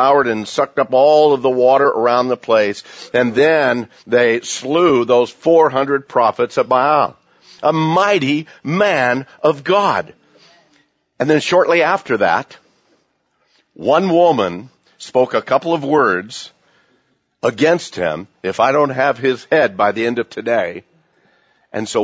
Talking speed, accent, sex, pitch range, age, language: 140 wpm, American, male, 120-165 Hz, 60-79, English